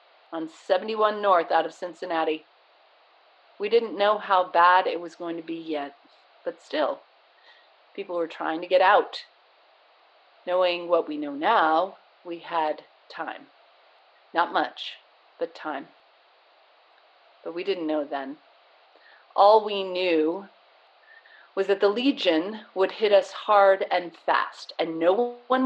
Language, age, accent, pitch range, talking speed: English, 40-59, American, 170-270 Hz, 135 wpm